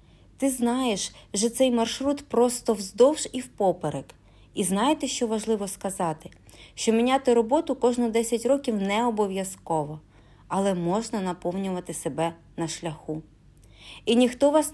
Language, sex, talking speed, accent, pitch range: Ukrainian, female, 125 wpm, native, 165-255 Hz